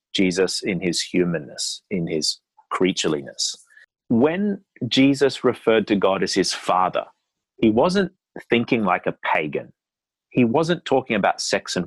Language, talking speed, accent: English, 135 wpm, Australian